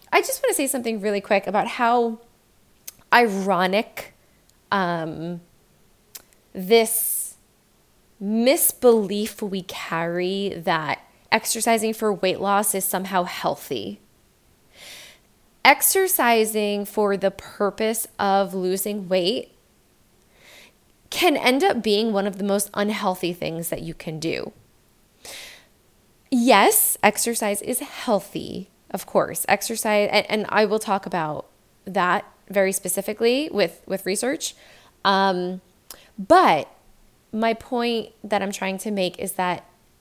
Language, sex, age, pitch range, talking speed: English, female, 20-39, 190-230 Hz, 110 wpm